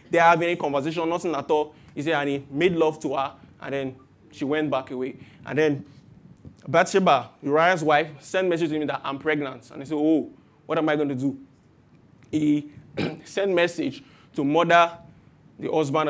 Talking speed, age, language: 195 wpm, 20-39, English